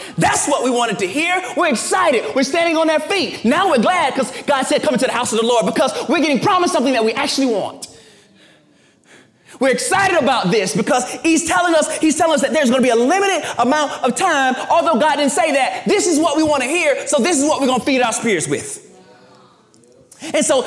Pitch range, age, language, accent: 250-315 Hz, 20-39, English, American